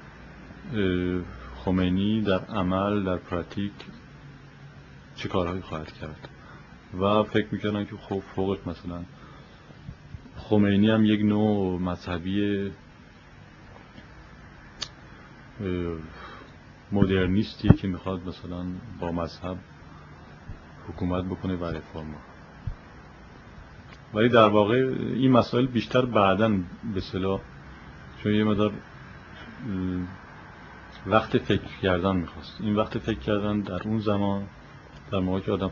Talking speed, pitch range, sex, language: 95 wpm, 90-105 Hz, male, Persian